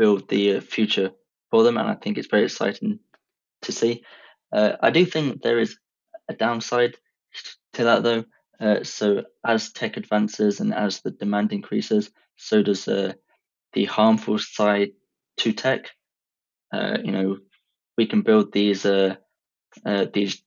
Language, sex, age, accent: English, male, 20-39, British